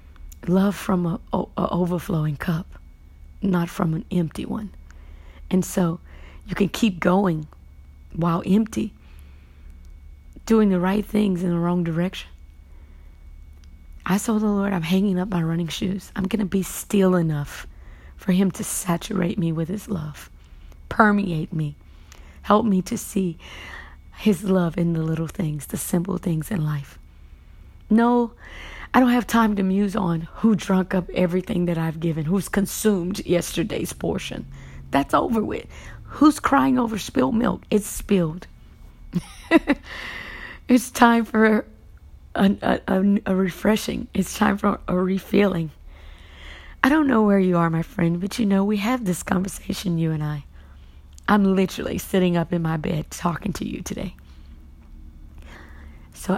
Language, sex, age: English, female, 30-49